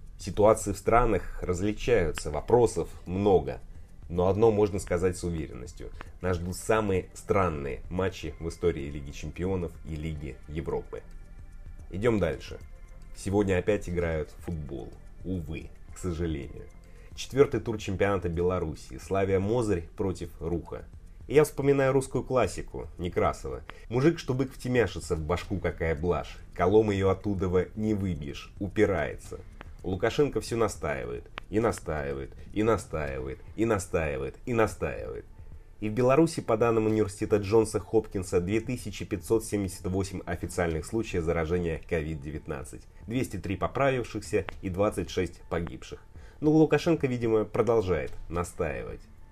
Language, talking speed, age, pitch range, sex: Russian, 115 wpm, 30-49, 85-110 Hz, male